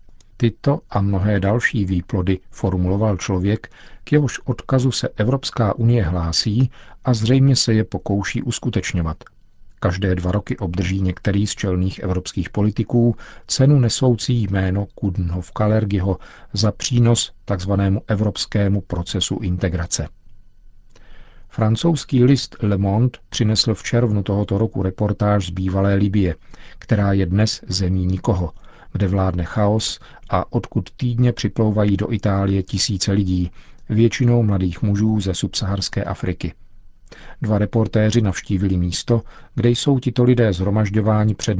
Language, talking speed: Czech, 125 wpm